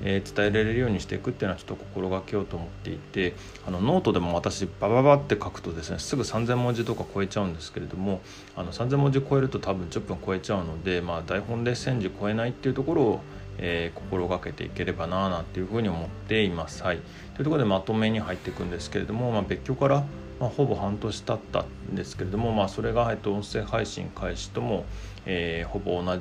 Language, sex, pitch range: Japanese, male, 90-105 Hz